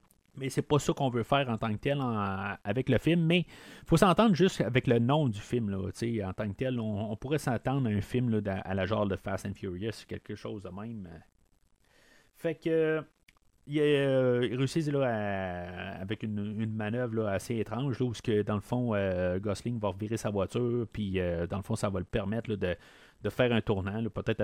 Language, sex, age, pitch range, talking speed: French, male, 30-49, 100-140 Hz, 240 wpm